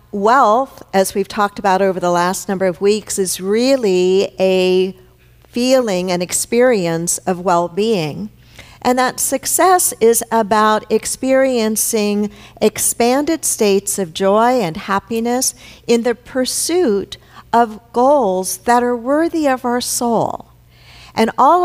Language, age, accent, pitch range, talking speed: English, 50-69, American, 200-265 Hz, 120 wpm